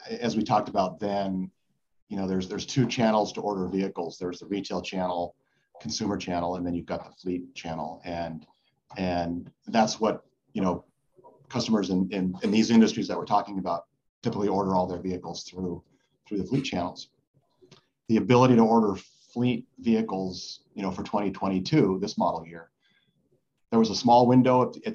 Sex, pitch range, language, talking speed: male, 90-115 Hz, English, 175 wpm